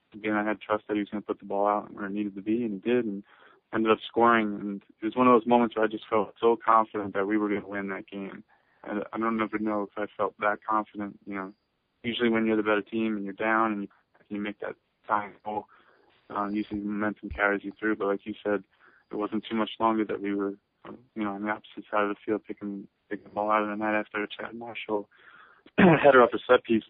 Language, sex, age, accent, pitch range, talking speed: English, male, 20-39, American, 100-110 Hz, 260 wpm